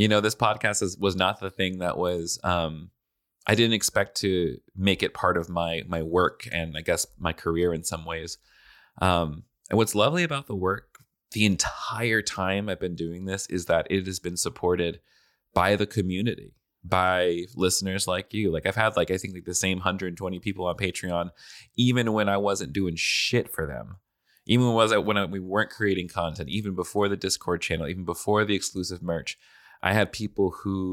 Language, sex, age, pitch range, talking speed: English, male, 20-39, 90-105 Hz, 200 wpm